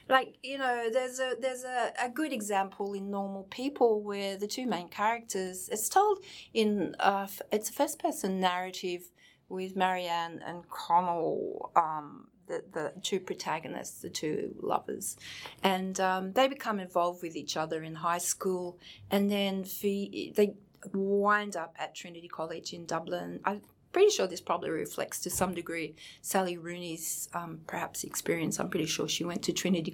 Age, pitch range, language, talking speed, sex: 30-49, 175-220 Hz, English, 160 wpm, female